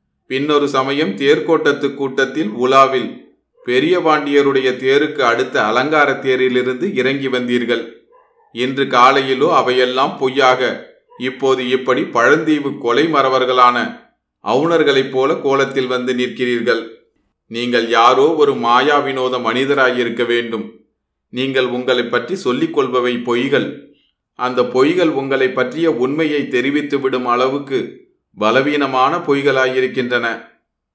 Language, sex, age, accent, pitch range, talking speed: Tamil, male, 30-49, native, 125-145 Hz, 95 wpm